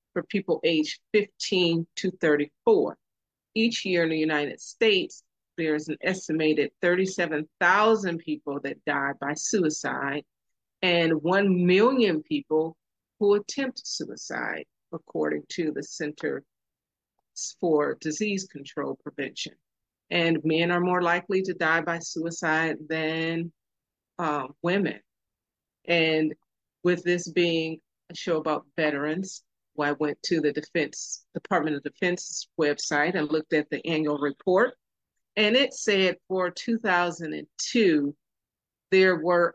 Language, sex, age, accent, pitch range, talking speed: English, female, 40-59, American, 155-185 Hz, 115 wpm